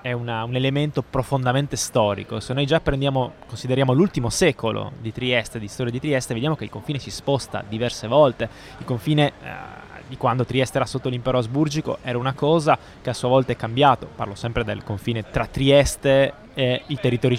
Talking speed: 190 wpm